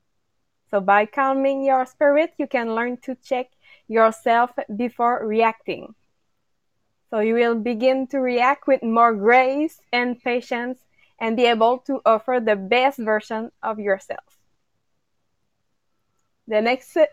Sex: female